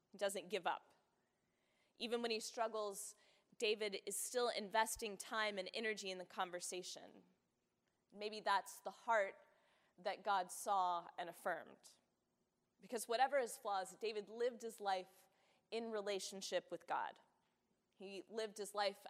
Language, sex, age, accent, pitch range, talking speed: English, female, 20-39, American, 185-220 Hz, 135 wpm